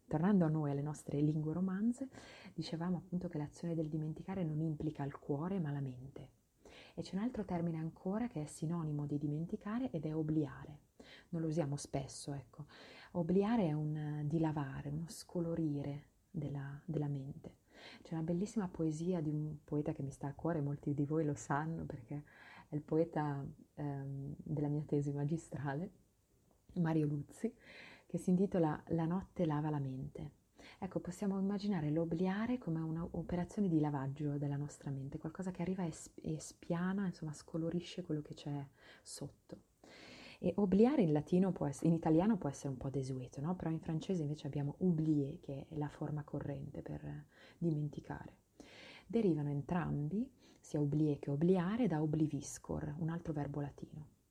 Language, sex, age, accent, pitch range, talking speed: Italian, female, 30-49, native, 145-175 Hz, 160 wpm